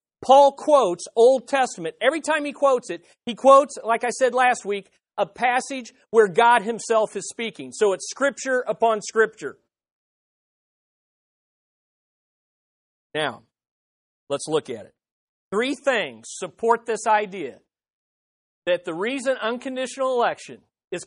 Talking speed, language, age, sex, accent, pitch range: 125 wpm, English, 40-59, male, American, 205-265 Hz